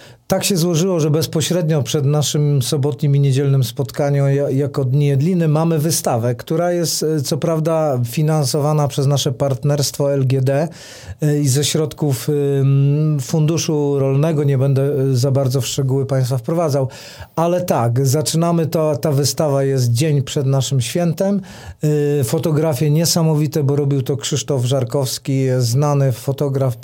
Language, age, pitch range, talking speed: Polish, 40-59, 135-155 Hz, 130 wpm